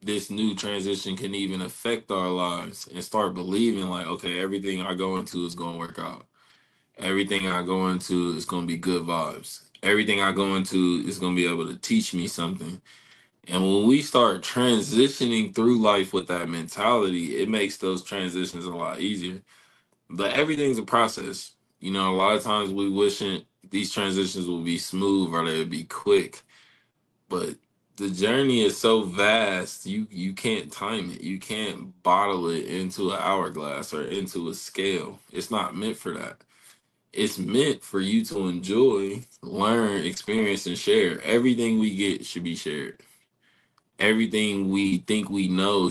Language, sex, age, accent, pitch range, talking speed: English, male, 20-39, American, 90-105 Hz, 170 wpm